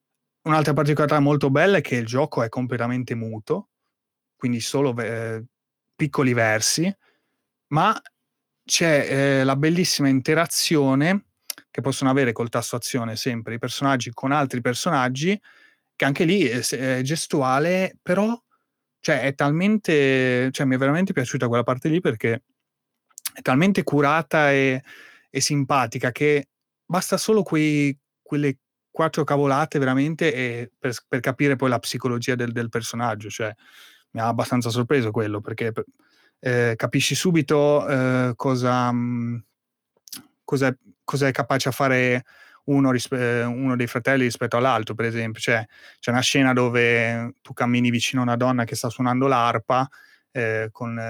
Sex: male